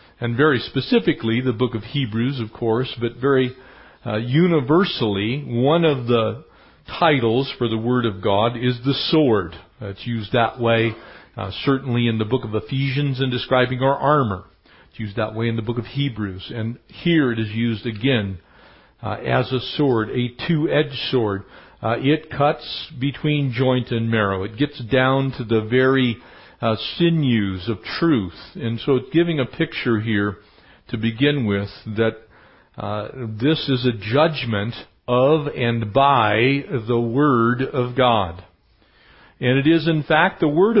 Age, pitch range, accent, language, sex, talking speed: 50-69, 115-140 Hz, American, English, male, 160 wpm